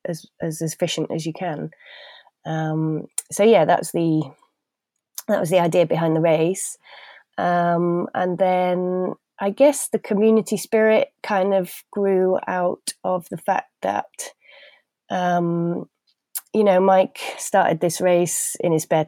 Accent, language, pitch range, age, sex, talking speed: British, English, 160-180 Hz, 20-39, female, 140 wpm